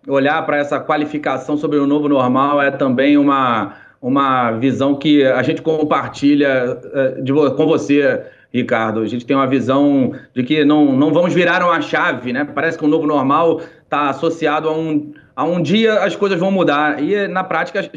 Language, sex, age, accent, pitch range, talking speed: Portuguese, male, 30-49, Brazilian, 145-185 Hz, 175 wpm